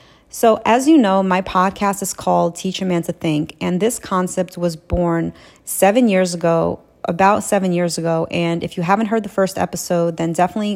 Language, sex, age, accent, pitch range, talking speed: English, female, 30-49, American, 170-195 Hz, 195 wpm